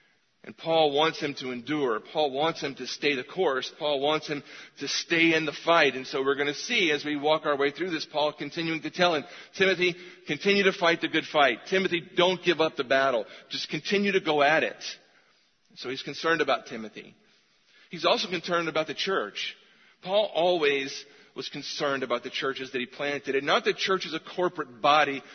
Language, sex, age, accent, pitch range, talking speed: English, male, 40-59, American, 140-175 Hz, 205 wpm